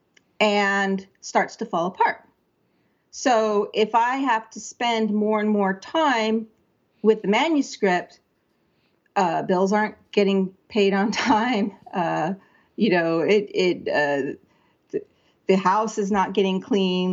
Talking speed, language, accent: 130 wpm, English, American